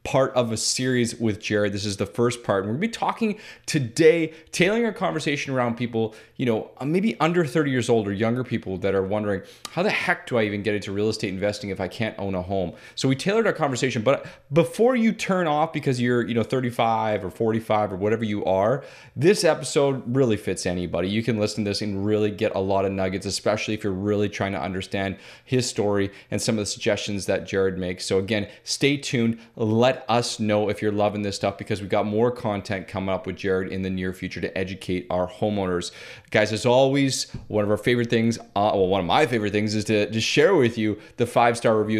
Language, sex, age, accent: English, male, 30-49, American